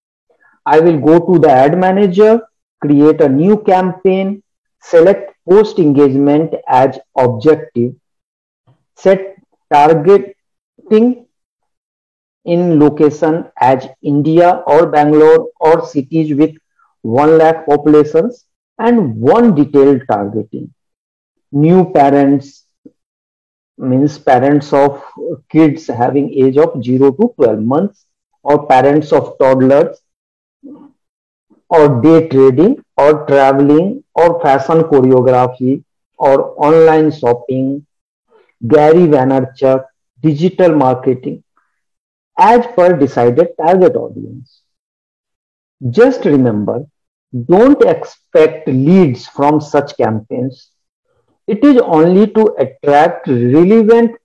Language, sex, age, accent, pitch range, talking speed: English, male, 50-69, Indian, 135-185 Hz, 95 wpm